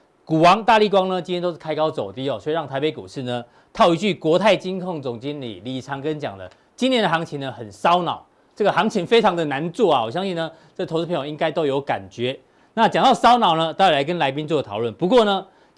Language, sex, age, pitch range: Chinese, male, 40-59, 145-195 Hz